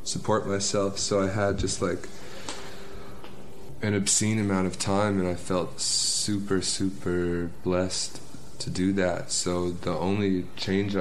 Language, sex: English, male